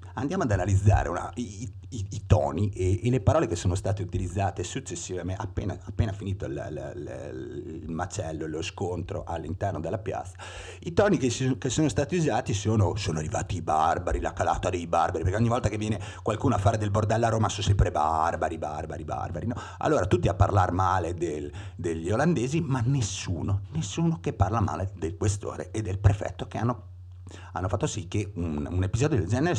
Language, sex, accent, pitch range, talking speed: Italian, male, native, 90-110 Hz, 195 wpm